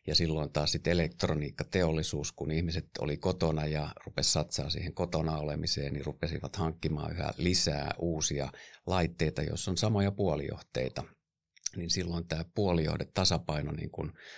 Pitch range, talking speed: 75-85 Hz, 135 wpm